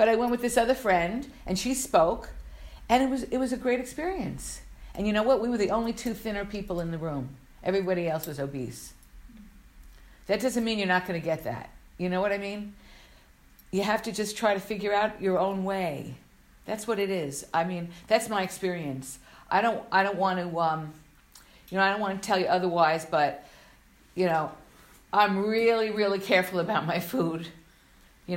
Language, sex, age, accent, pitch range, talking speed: English, female, 50-69, American, 170-235 Hz, 205 wpm